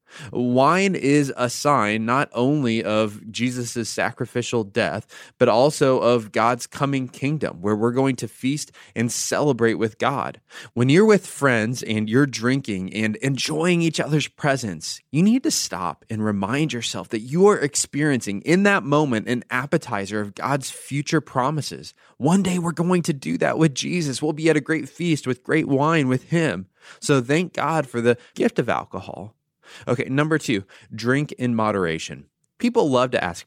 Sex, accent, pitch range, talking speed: male, American, 115-155 Hz, 170 wpm